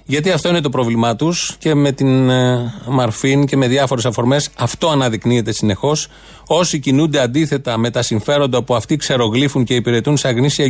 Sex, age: male, 30-49